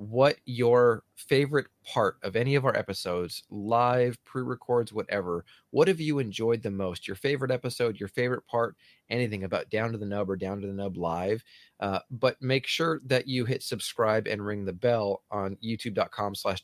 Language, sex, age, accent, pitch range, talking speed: English, male, 30-49, American, 105-125 Hz, 185 wpm